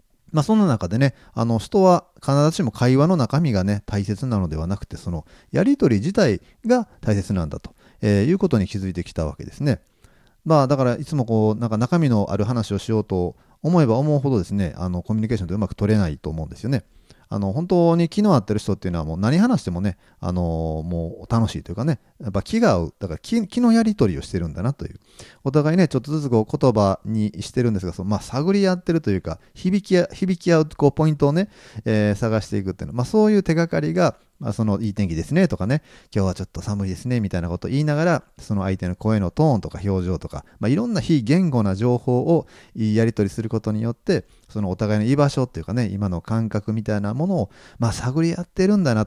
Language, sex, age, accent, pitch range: Japanese, male, 40-59, native, 95-150 Hz